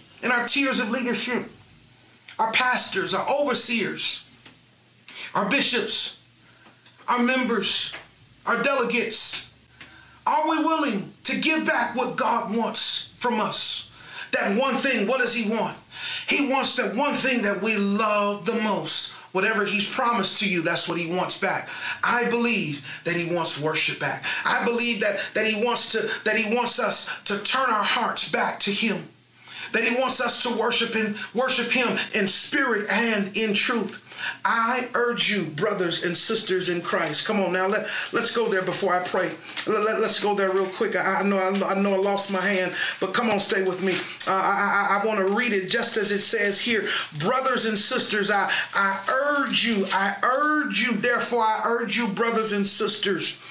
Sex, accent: male, American